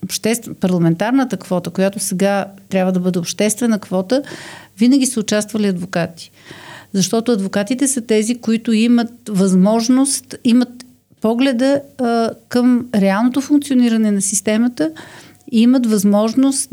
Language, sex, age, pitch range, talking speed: Bulgarian, female, 40-59, 195-250 Hz, 110 wpm